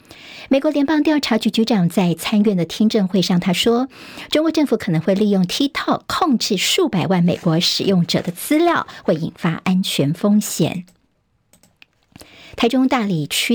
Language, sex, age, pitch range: Chinese, male, 50-69, 185-240 Hz